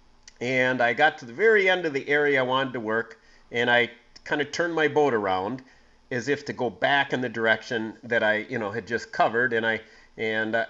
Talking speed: 225 wpm